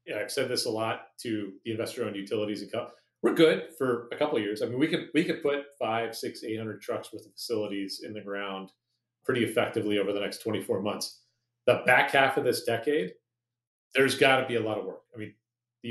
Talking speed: 225 wpm